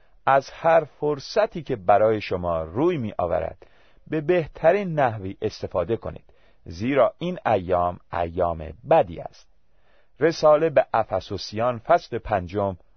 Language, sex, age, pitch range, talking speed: Persian, male, 40-59, 95-150 Hz, 115 wpm